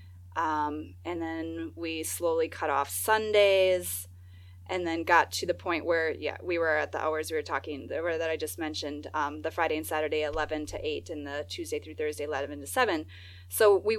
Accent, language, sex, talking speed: American, English, female, 195 wpm